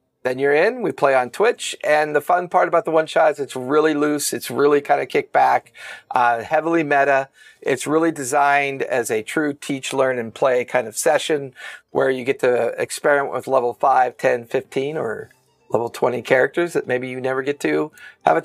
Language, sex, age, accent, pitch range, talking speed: English, male, 40-59, American, 125-165 Hz, 200 wpm